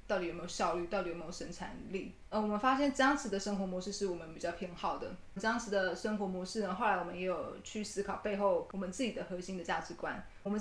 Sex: female